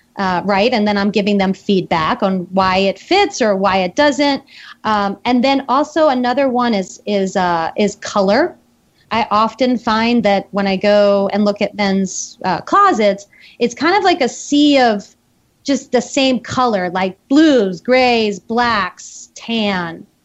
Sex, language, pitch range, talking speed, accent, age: female, English, 200-265 Hz, 165 wpm, American, 30-49